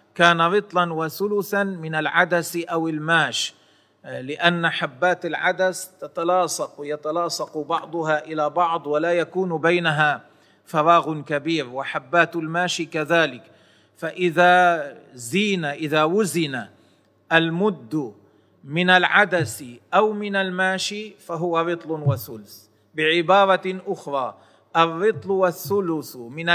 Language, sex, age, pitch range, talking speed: Arabic, male, 40-59, 150-185 Hz, 95 wpm